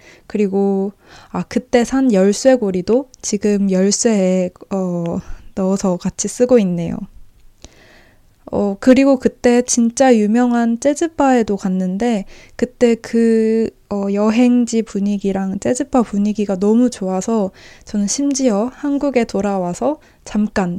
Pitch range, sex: 195-245 Hz, female